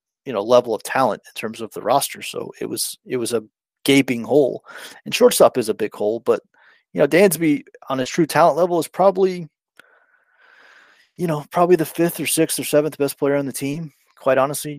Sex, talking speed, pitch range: male, 205 wpm, 125-150 Hz